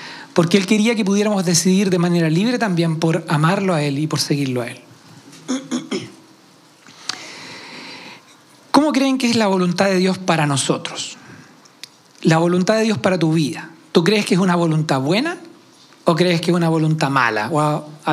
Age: 40-59